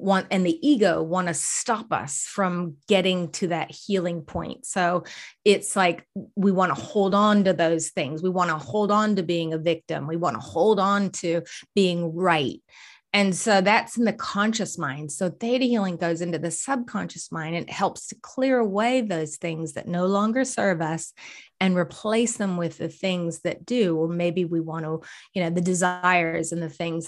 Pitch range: 165-195 Hz